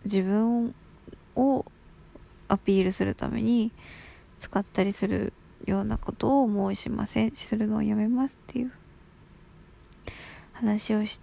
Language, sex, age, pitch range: Japanese, female, 20-39, 195-245 Hz